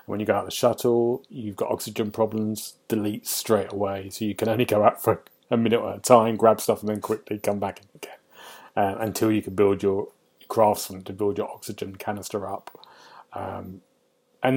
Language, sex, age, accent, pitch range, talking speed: English, male, 30-49, British, 100-120 Hz, 200 wpm